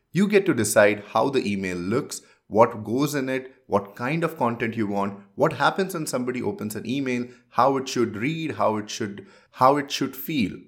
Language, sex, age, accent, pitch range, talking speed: English, male, 30-49, Indian, 105-150 Hz, 200 wpm